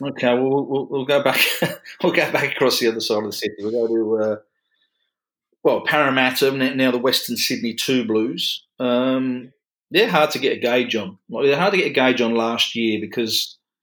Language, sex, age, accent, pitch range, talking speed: English, male, 30-49, British, 115-135 Hz, 205 wpm